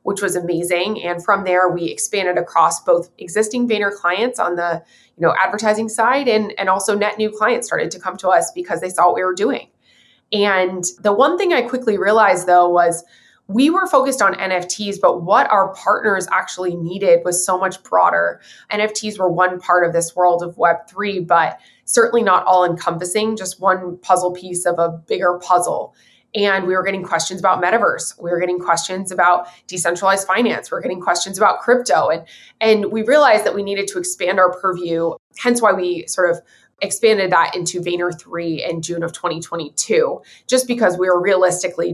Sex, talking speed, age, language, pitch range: female, 185 wpm, 20-39, English, 175-215 Hz